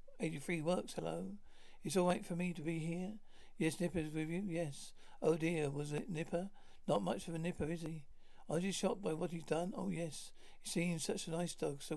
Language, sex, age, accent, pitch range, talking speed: English, male, 60-79, British, 155-180 Hz, 225 wpm